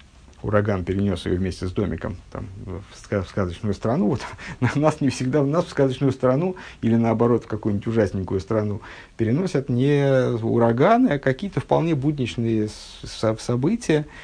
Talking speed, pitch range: 155 wpm, 105-130 Hz